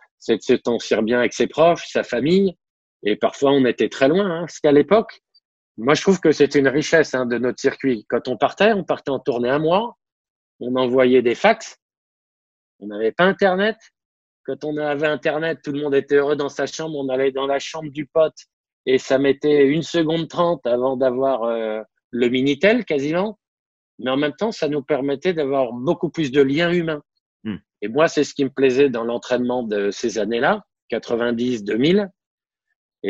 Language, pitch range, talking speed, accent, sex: French, 120-160 Hz, 190 wpm, French, male